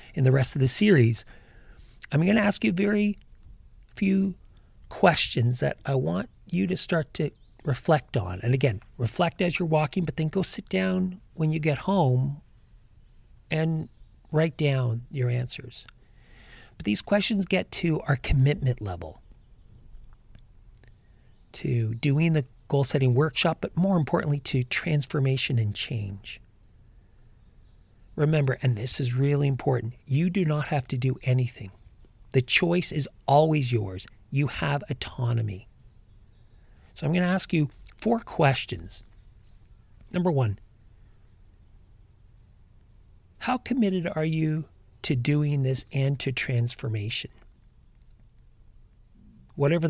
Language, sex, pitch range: English, male, 110-155 Hz